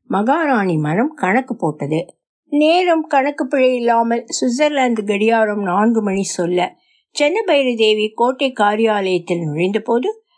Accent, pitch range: native, 205-300 Hz